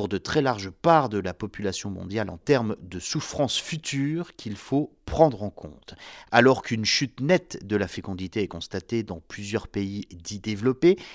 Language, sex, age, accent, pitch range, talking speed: French, male, 40-59, French, 95-155 Hz, 170 wpm